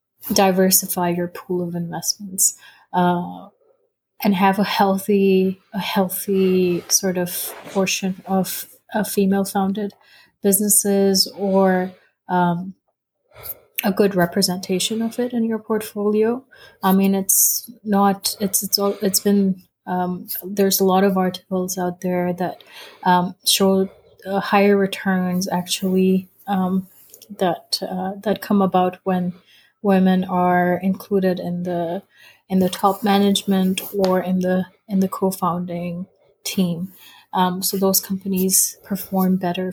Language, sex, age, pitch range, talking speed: English, female, 30-49, 180-200 Hz, 125 wpm